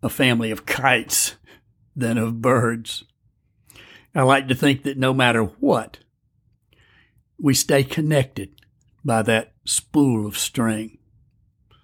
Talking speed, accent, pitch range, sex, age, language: 115 wpm, American, 110-130 Hz, male, 60-79, English